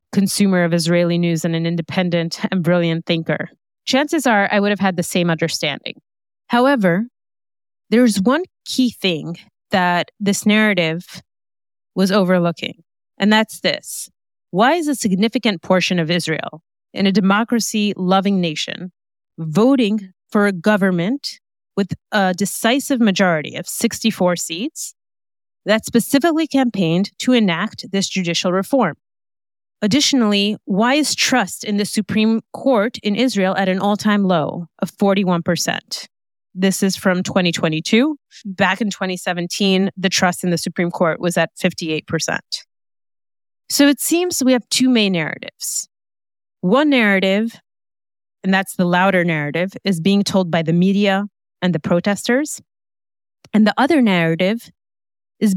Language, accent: English, American